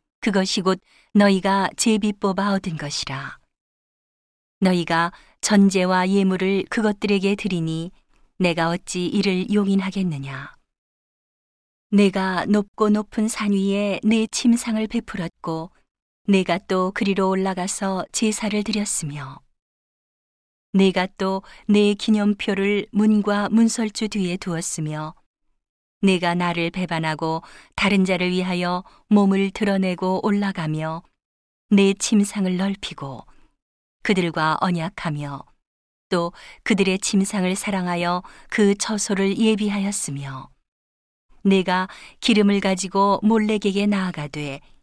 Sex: female